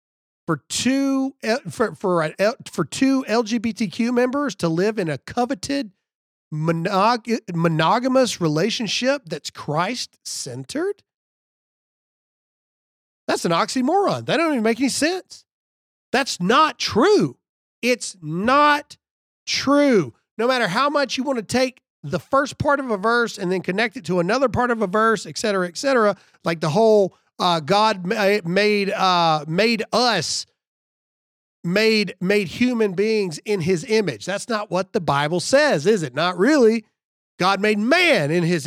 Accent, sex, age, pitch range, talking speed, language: American, male, 40-59, 165-235 Hz, 145 wpm, English